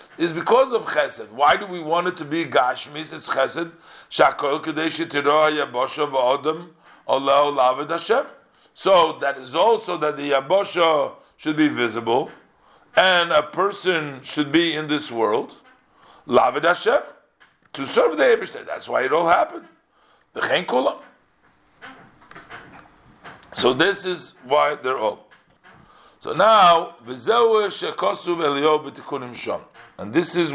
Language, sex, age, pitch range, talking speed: English, male, 50-69, 140-180 Hz, 115 wpm